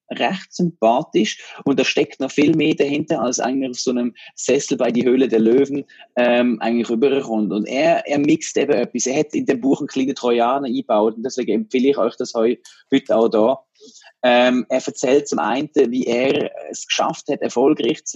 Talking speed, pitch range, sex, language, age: 195 wpm, 120-150 Hz, male, German, 30-49